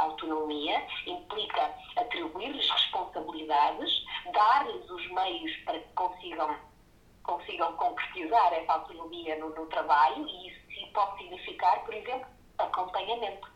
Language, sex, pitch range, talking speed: Portuguese, female, 195-295 Hz, 110 wpm